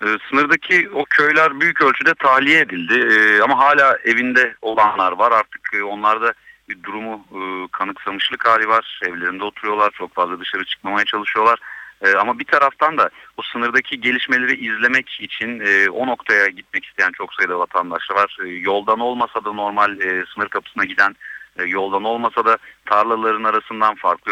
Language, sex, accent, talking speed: Turkish, male, native, 160 wpm